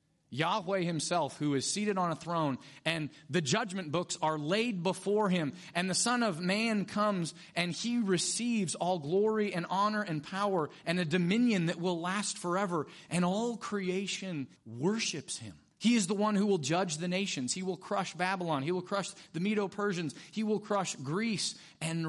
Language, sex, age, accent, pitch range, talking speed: English, male, 30-49, American, 150-205 Hz, 180 wpm